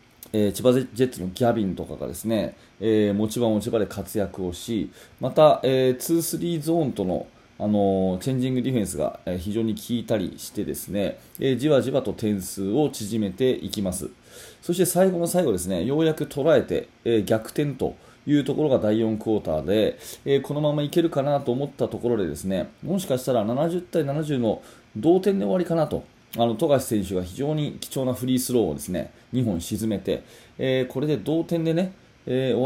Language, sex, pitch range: Japanese, male, 100-140 Hz